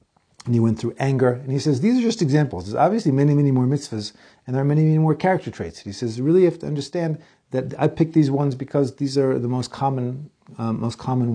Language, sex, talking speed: English, male, 255 wpm